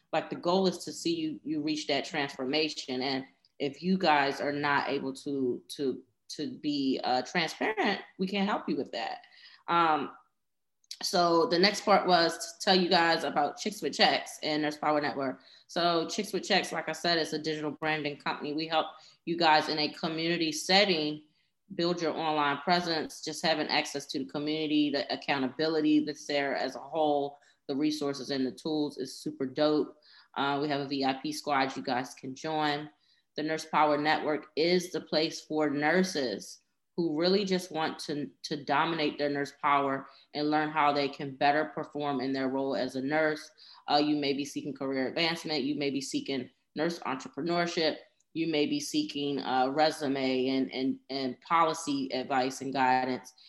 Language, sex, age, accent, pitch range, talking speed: English, female, 20-39, American, 140-165 Hz, 180 wpm